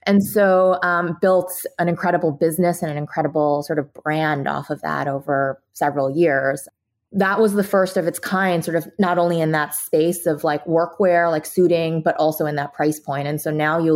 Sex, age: female, 20-39